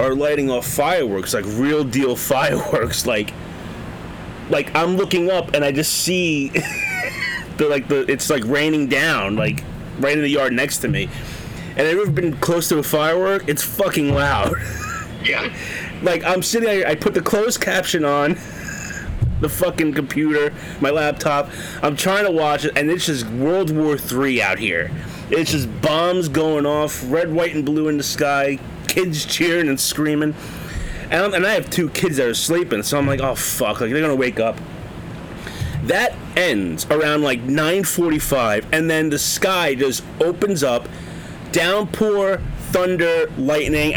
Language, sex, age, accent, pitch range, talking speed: English, male, 30-49, American, 140-170 Hz, 165 wpm